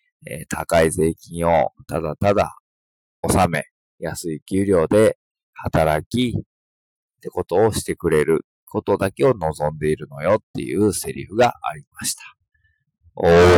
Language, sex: Japanese, male